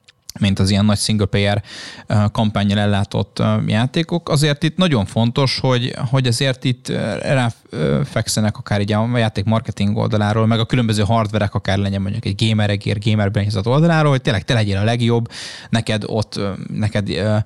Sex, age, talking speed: male, 20-39, 150 wpm